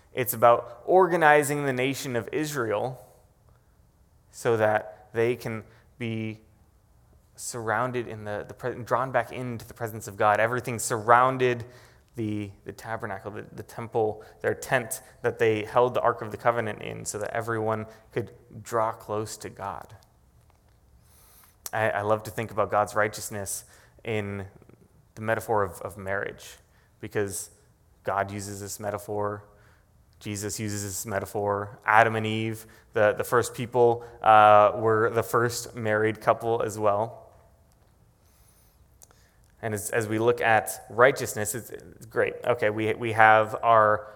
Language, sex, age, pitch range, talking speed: English, male, 20-39, 105-120 Hz, 140 wpm